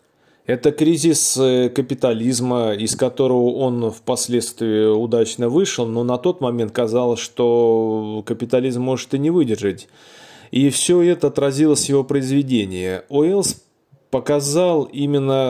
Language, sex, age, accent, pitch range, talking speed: Russian, male, 20-39, native, 115-140 Hz, 115 wpm